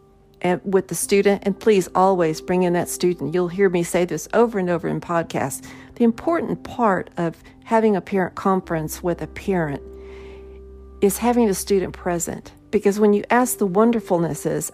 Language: English